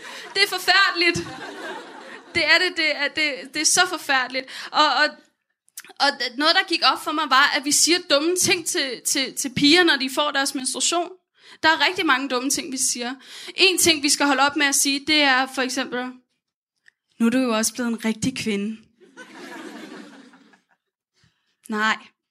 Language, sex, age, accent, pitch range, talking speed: Danish, female, 20-39, native, 265-355 Hz, 185 wpm